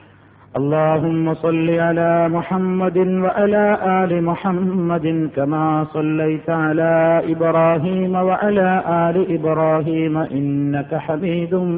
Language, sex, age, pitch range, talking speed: Malayalam, male, 50-69, 155-185 Hz, 80 wpm